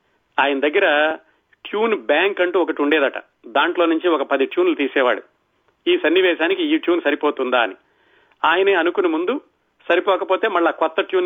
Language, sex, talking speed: Telugu, male, 140 wpm